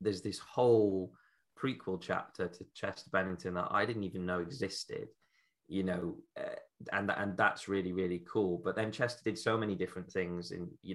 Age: 20-39